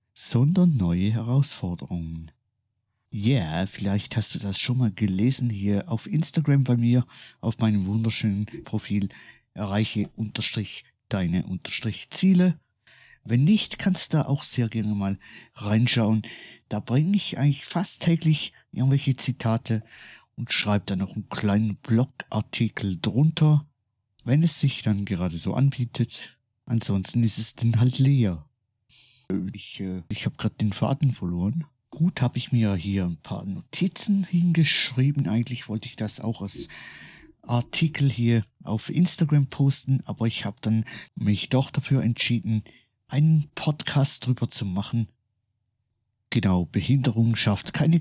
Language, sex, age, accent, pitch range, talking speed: German, male, 50-69, German, 105-140 Hz, 135 wpm